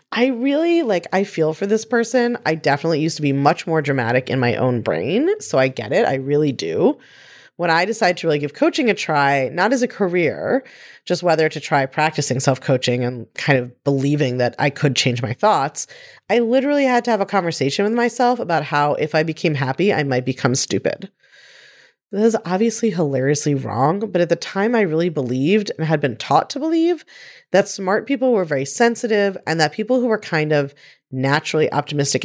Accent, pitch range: American, 140-205 Hz